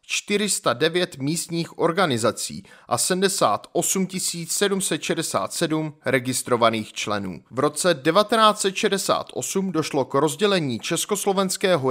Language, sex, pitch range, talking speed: Czech, male, 140-195 Hz, 75 wpm